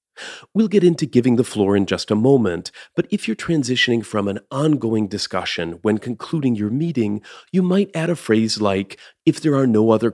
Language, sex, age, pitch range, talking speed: English, male, 40-59, 105-150 Hz, 195 wpm